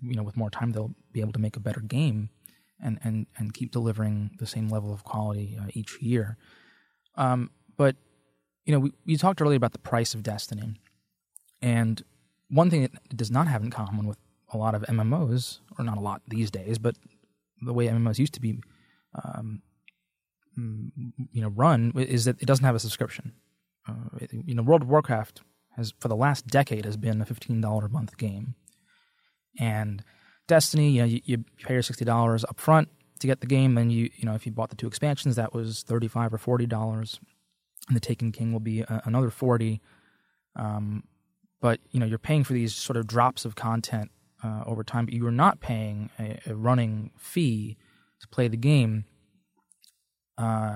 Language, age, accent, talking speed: English, 20-39, American, 195 wpm